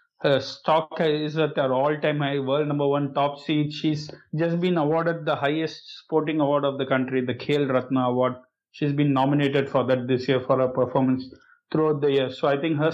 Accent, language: Indian, English